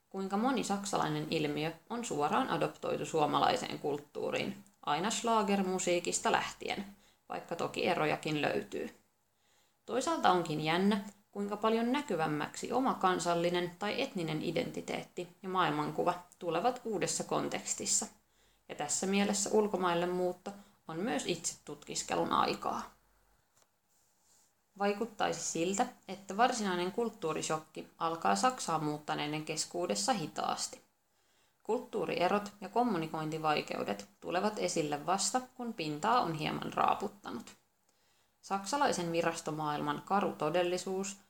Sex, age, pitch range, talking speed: female, 20-39, 165-220 Hz, 95 wpm